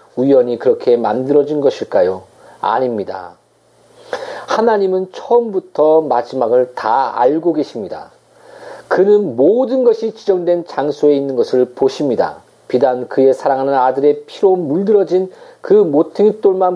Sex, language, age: male, Korean, 40-59